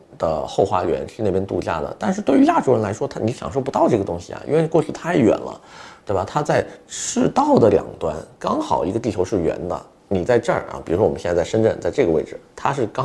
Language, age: Chinese, 30-49